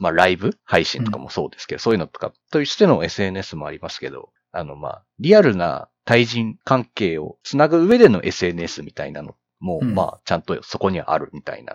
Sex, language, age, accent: male, Japanese, 40-59, native